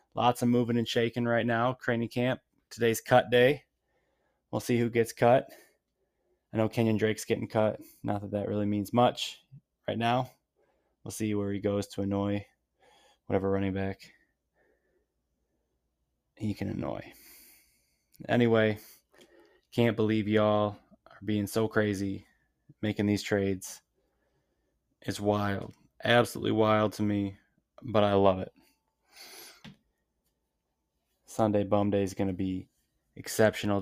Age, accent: 20-39, American